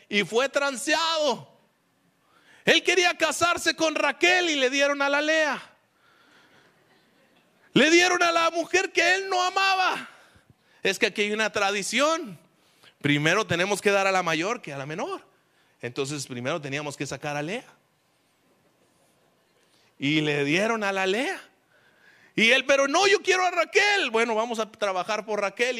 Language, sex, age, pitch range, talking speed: Spanish, male, 30-49, 220-330 Hz, 155 wpm